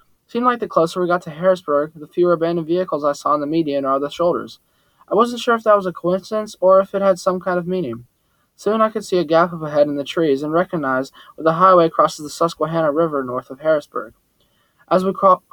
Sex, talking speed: male, 245 wpm